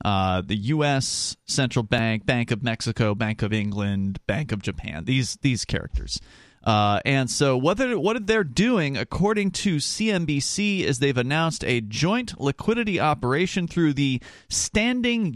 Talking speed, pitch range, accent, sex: 150 wpm, 120-195 Hz, American, male